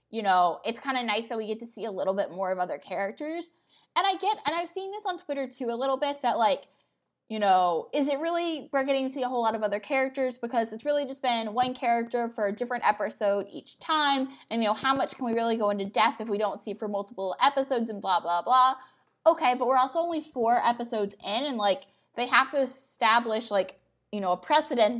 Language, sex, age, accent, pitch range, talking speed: English, female, 10-29, American, 210-270 Hz, 245 wpm